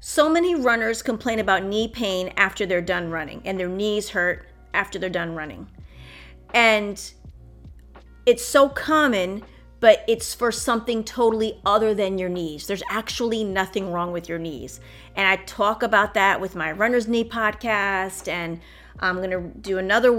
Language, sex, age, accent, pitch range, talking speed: English, female, 30-49, American, 180-235 Hz, 165 wpm